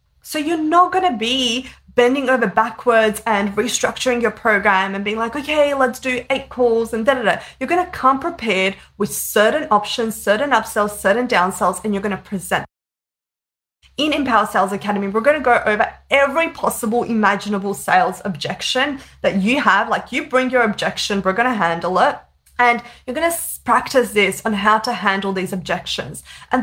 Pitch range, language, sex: 195-255 Hz, English, female